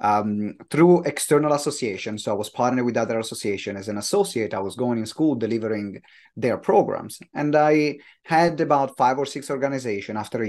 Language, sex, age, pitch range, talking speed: English, male, 30-49, 115-145 Hz, 185 wpm